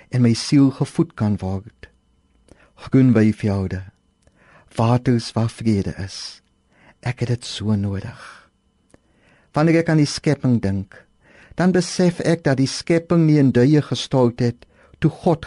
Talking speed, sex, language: 140 wpm, male, English